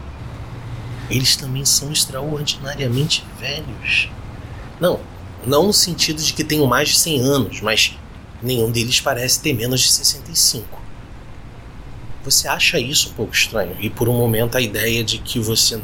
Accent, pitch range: Brazilian, 110-135 Hz